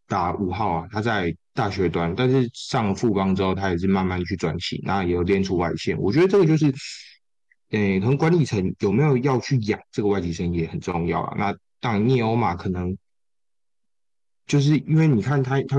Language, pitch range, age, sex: Chinese, 90-115 Hz, 20-39, male